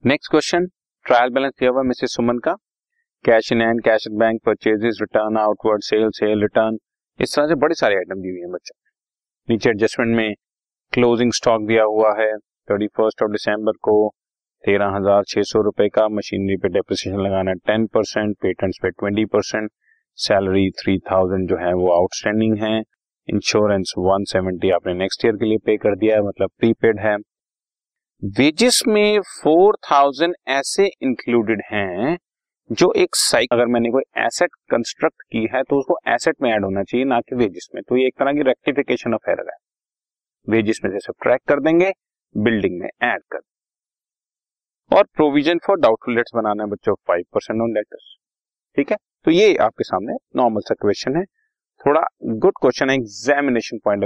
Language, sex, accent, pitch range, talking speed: Hindi, male, native, 105-135 Hz, 135 wpm